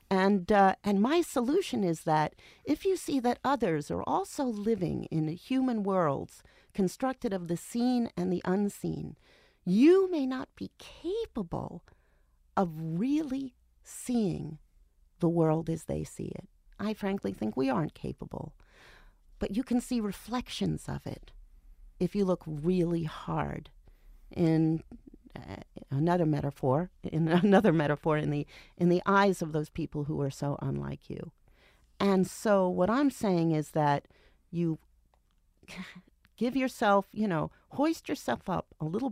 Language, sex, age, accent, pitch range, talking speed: English, female, 40-59, American, 160-230 Hz, 145 wpm